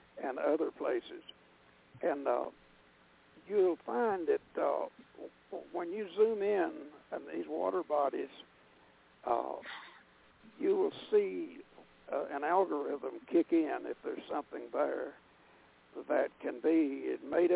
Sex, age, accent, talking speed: male, 60-79, American, 115 wpm